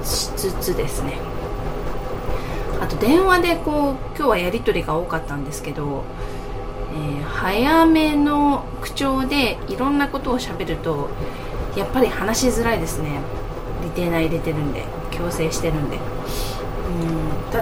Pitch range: 130-190 Hz